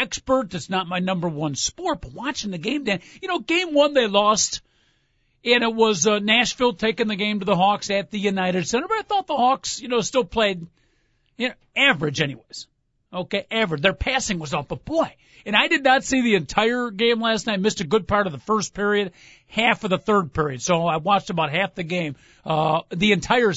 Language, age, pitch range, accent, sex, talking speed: English, 50-69, 185-240 Hz, American, male, 225 wpm